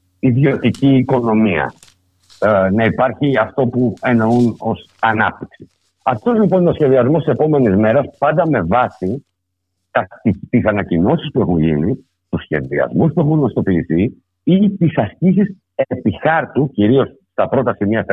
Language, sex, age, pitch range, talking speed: Greek, male, 60-79, 95-150 Hz, 130 wpm